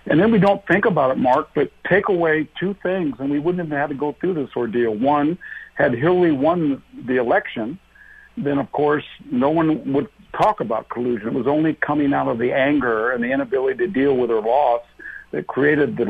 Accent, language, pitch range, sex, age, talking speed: American, English, 130-155 Hz, male, 60-79, 215 wpm